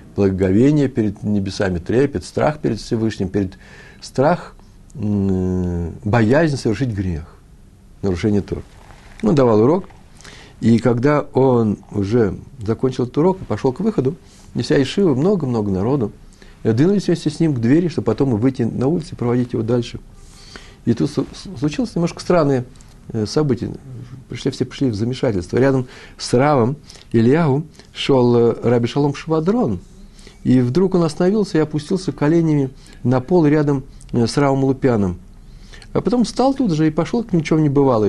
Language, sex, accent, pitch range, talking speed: Russian, male, native, 110-155 Hz, 140 wpm